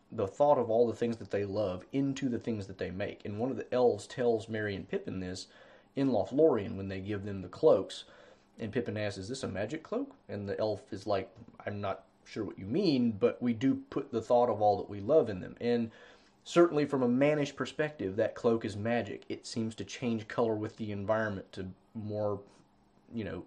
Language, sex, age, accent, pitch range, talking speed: English, male, 30-49, American, 100-125 Hz, 220 wpm